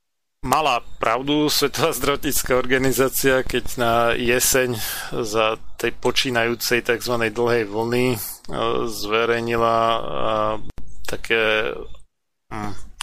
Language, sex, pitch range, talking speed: Slovak, male, 110-120 Hz, 85 wpm